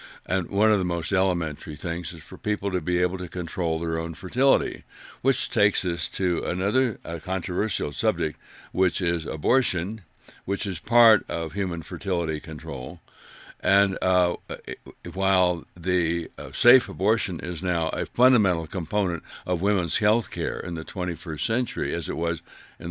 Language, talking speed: English, 155 wpm